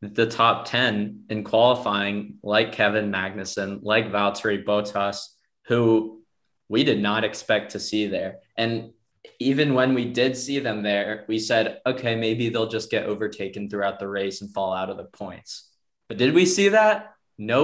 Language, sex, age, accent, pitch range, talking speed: English, male, 20-39, American, 105-130 Hz, 170 wpm